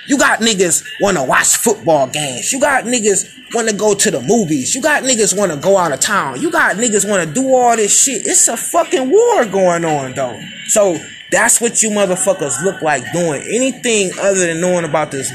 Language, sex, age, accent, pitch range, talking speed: English, male, 20-39, American, 185-245 Hz, 220 wpm